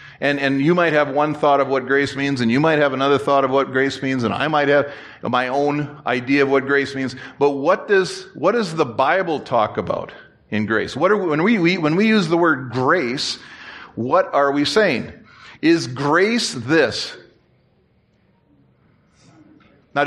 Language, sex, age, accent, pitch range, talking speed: English, male, 40-59, American, 130-155 Hz, 190 wpm